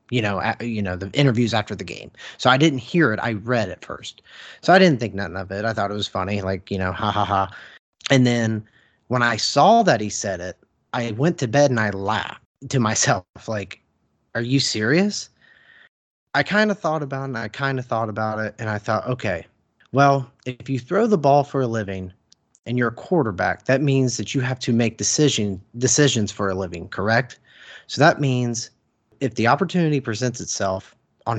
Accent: American